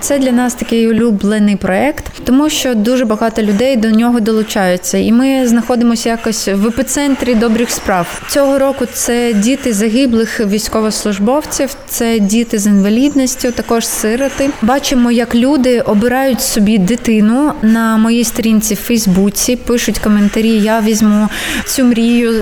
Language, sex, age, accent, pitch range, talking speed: Ukrainian, female, 20-39, native, 210-250 Hz, 135 wpm